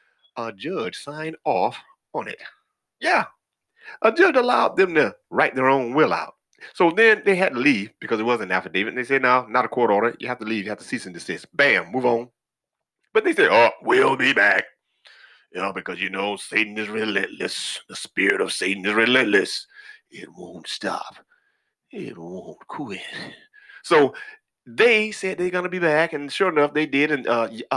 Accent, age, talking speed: American, 30-49, 195 wpm